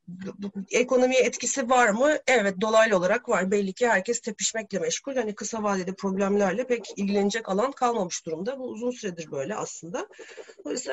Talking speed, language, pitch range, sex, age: 155 wpm, Turkish, 190-245 Hz, female, 40-59